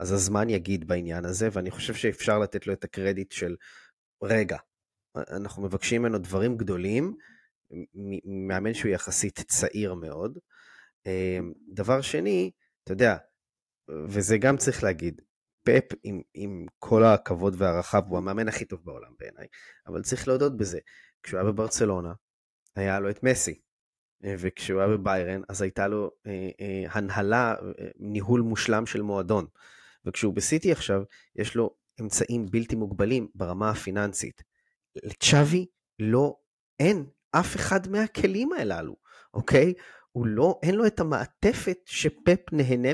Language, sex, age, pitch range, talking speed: Hebrew, male, 20-39, 95-120 Hz, 135 wpm